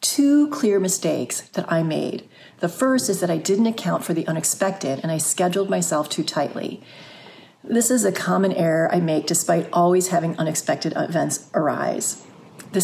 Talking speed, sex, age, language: 170 wpm, female, 40-59, English